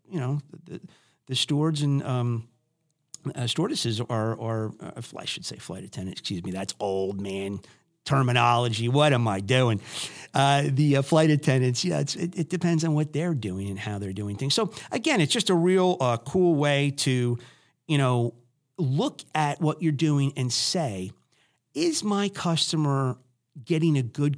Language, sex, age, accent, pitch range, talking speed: English, male, 50-69, American, 105-150 Hz, 175 wpm